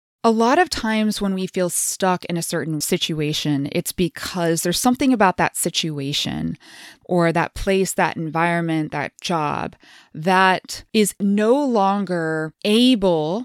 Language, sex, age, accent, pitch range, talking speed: English, female, 20-39, American, 165-210 Hz, 140 wpm